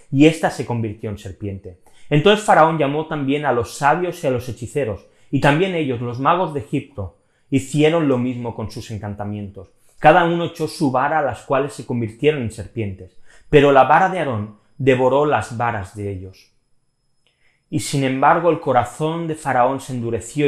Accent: Spanish